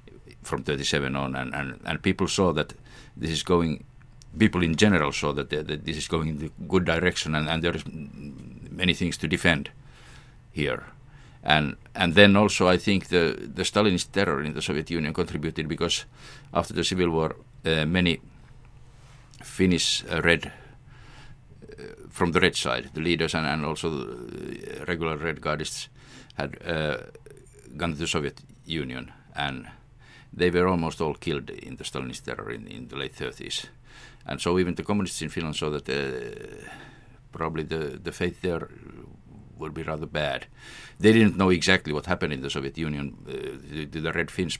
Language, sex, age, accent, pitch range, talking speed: English, male, 50-69, Finnish, 75-95 Hz, 175 wpm